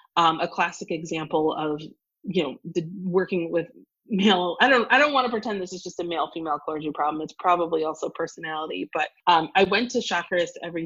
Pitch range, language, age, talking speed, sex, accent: 155-205 Hz, English, 30-49, 200 wpm, female, American